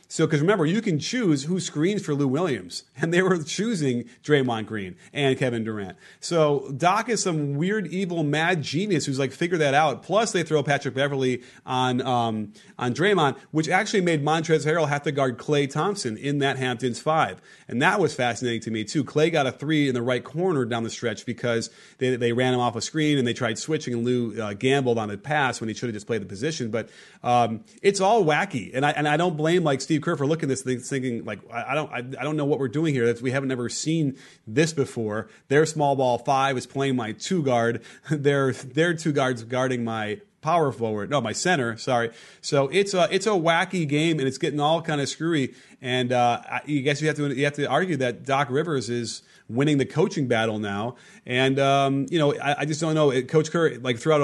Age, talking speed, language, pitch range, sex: 30-49, 230 wpm, English, 125-155 Hz, male